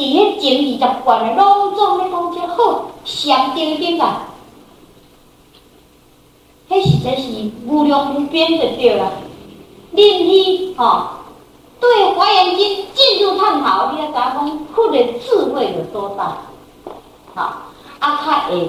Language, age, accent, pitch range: Chinese, 50-69, American, 265-390 Hz